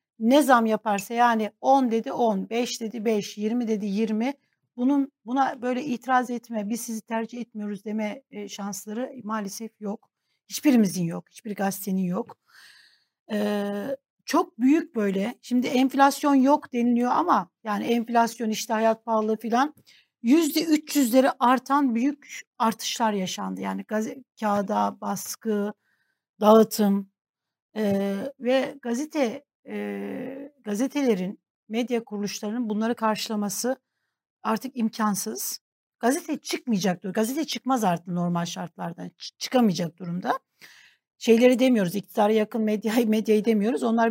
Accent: native